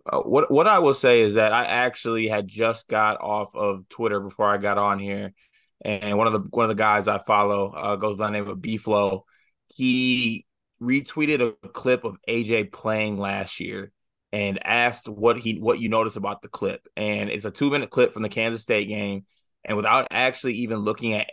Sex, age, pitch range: male, 20-39, 100-115 Hz